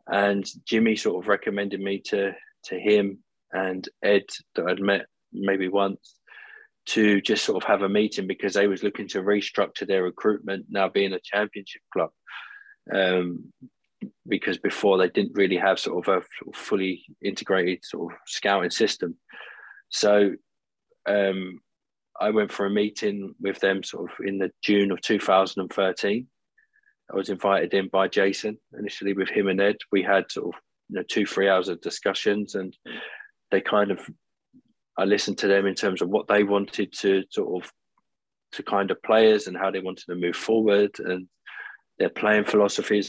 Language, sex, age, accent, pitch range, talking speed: English, male, 20-39, British, 95-105 Hz, 170 wpm